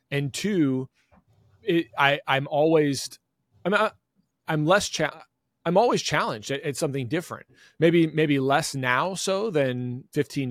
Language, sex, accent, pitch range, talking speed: English, male, American, 125-160 Hz, 145 wpm